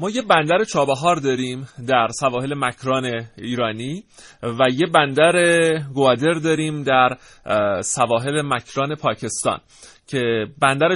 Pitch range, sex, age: 125-155 Hz, male, 30-49